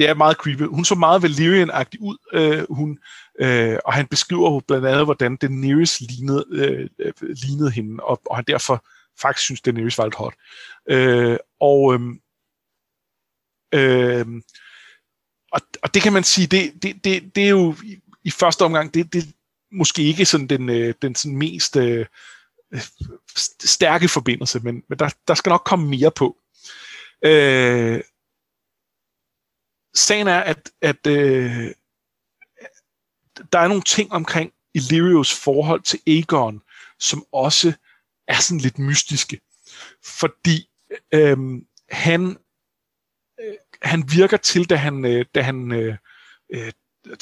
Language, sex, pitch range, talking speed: Danish, male, 135-175 Hz, 140 wpm